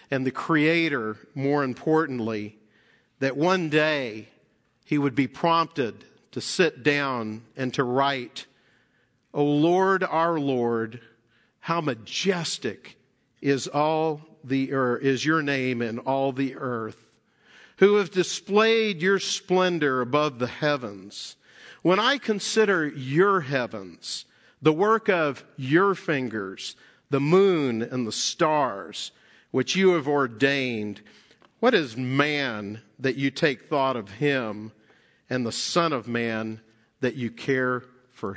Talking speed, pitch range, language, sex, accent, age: 125 wpm, 125-165 Hz, English, male, American, 50-69